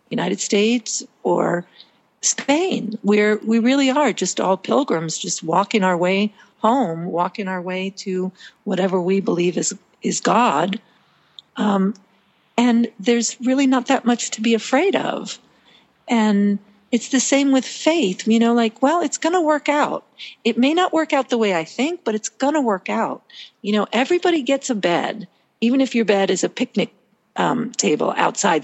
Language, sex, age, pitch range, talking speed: English, female, 50-69, 190-250 Hz, 170 wpm